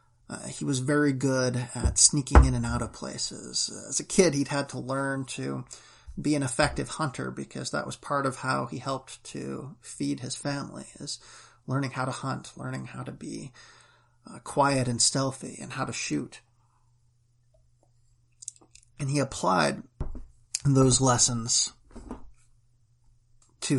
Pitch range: 120-135 Hz